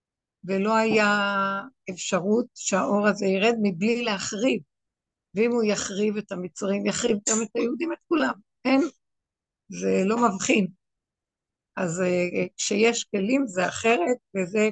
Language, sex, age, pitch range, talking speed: Hebrew, female, 60-79, 195-230 Hz, 120 wpm